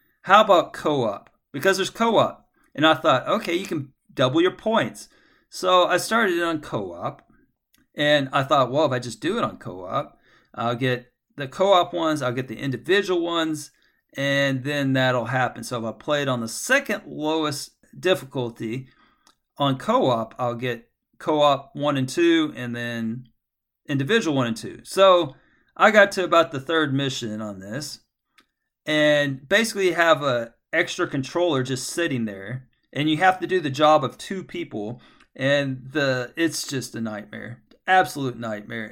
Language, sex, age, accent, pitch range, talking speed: English, male, 40-59, American, 125-160 Hz, 165 wpm